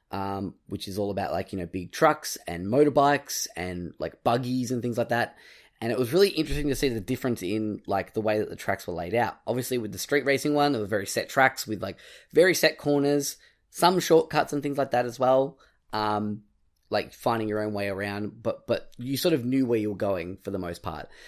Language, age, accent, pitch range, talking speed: English, 10-29, Australian, 100-125 Hz, 235 wpm